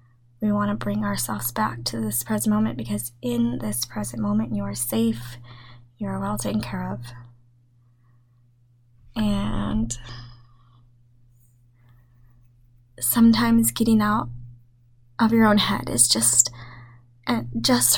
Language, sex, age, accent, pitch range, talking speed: English, female, 10-29, American, 115-120 Hz, 115 wpm